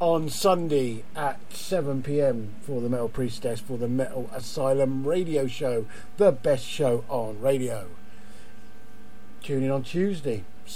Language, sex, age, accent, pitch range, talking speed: English, male, 50-69, British, 125-150 Hz, 130 wpm